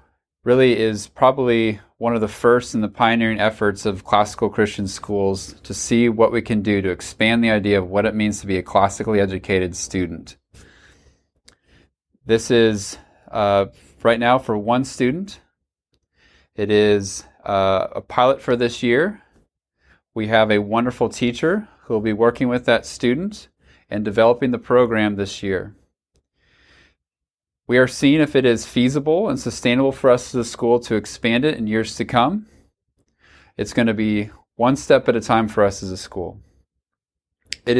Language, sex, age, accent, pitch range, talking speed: English, male, 30-49, American, 100-120 Hz, 165 wpm